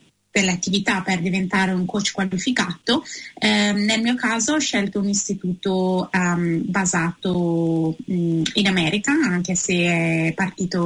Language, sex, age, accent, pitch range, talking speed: Italian, female, 20-39, native, 180-210 Hz, 135 wpm